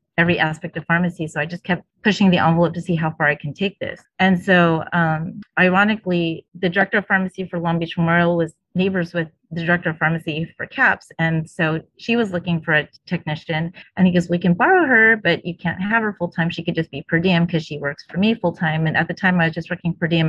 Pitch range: 165-195 Hz